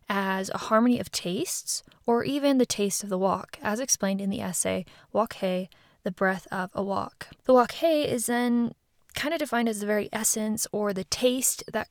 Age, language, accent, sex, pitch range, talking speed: 10-29, English, American, female, 195-245 Hz, 200 wpm